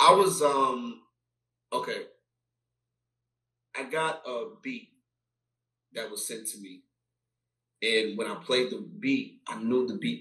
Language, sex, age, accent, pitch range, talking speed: English, male, 30-49, American, 115-155 Hz, 135 wpm